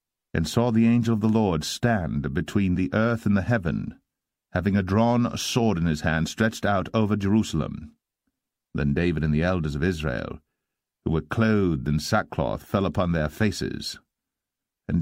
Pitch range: 80-105 Hz